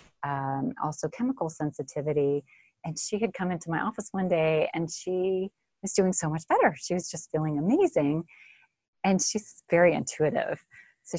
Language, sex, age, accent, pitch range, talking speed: English, female, 30-49, American, 145-185 Hz, 160 wpm